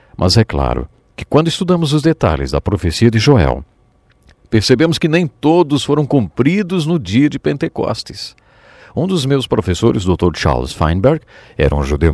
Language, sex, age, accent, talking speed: English, male, 50-69, Brazilian, 160 wpm